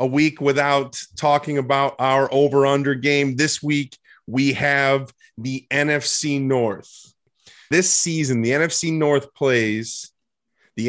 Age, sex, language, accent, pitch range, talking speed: 30-49, male, English, American, 120-155 Hz, 120 wpm